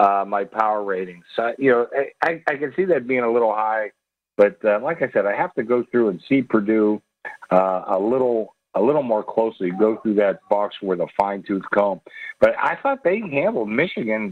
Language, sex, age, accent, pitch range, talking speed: English, male, 50-69, American, 100-125 Hz, 215 wpm